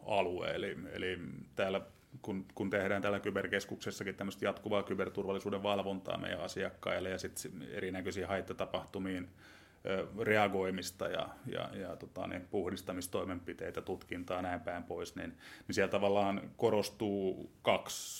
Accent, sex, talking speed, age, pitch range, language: native, male, 115 wpm, 30-49, 90-100 Hz, Finnish